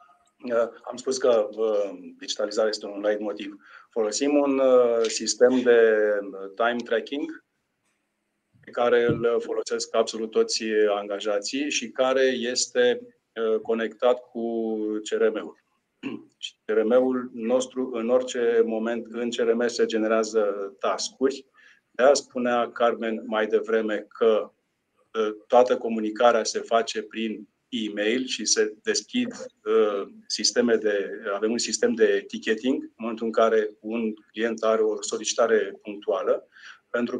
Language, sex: Romanian, male